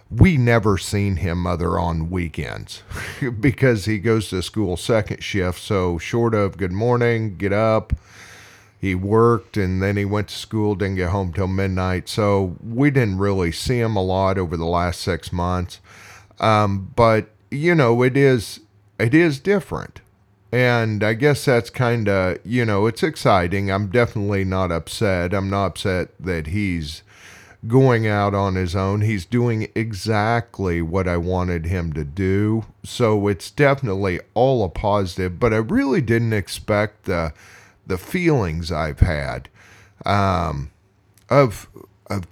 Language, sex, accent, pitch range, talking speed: English, male, American, 95-120 Hz, 155 wpm